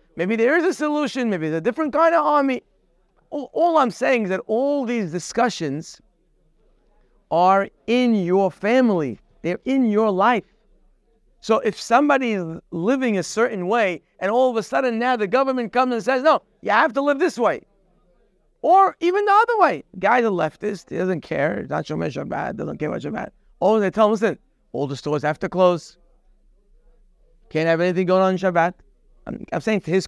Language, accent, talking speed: English, American, 195 wpm